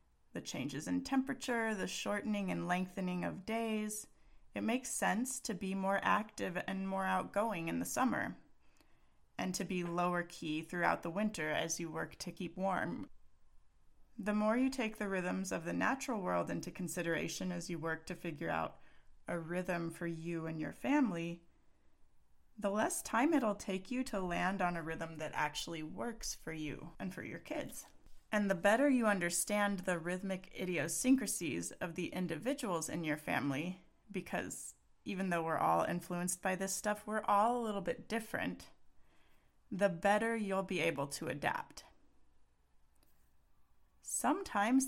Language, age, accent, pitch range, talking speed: English, 30-49, American, 165-210 Hz, 160 wpm